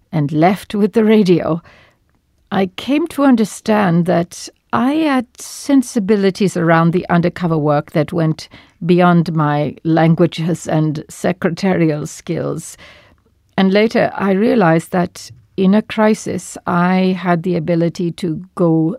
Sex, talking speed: female, 125 wpm